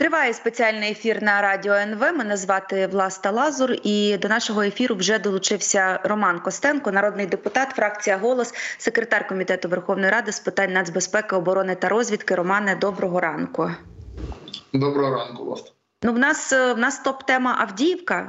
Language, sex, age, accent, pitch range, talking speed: Ukrainian, female, 20-39, native, 190-230 Hz, 150 wpm